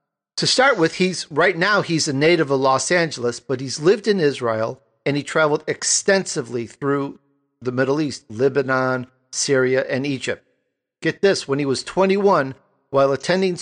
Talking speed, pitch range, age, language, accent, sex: 165 wpm, 135-190 Hz, 50-69, English, American, male